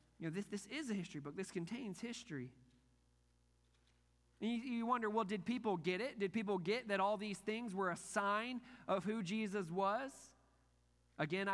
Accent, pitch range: American, 160-210 Hz